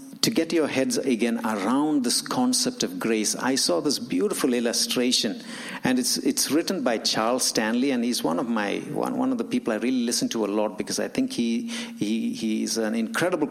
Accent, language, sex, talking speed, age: Indian, English, male, 205 wpm, 60-79